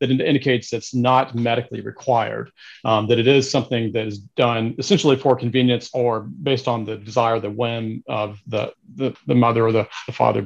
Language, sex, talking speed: English, male, 185 wpm